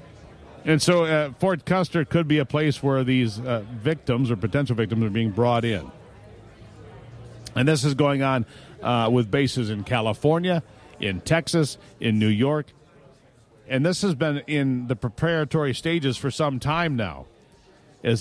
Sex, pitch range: male, 115-150 Hz